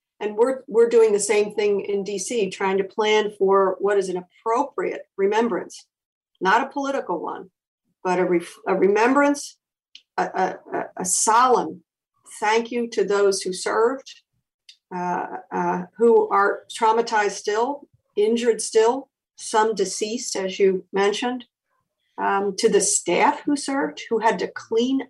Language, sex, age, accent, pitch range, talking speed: English, female, 50-69, American, 200-280 Hz, 145 wpm